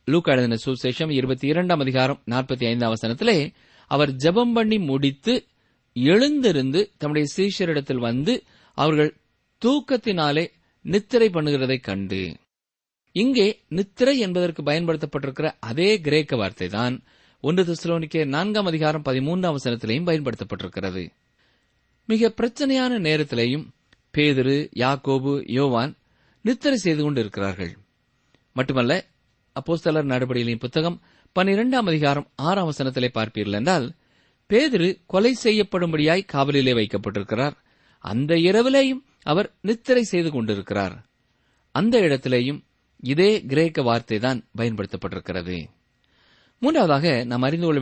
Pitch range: 125-185 Hz